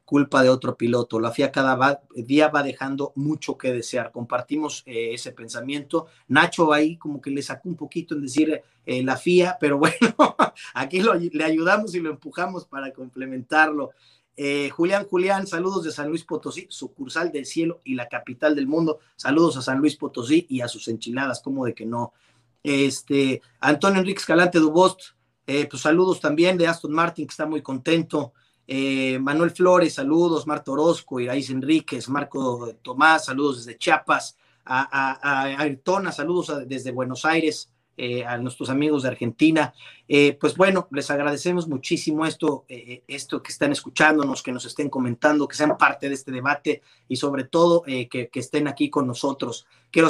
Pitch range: 130-160 Hz